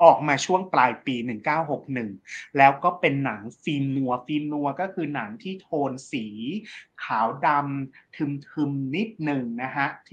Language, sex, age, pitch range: Thai, male, 30-49, 120-160 Hz